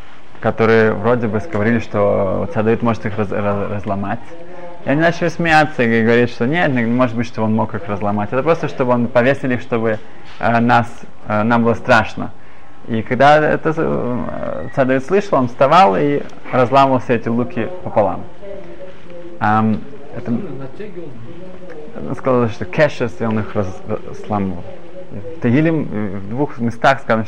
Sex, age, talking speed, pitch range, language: male, 20-39, 155 wpm, 110-135 Hz, Russian